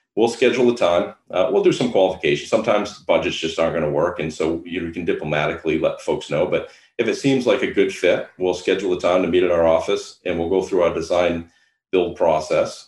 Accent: American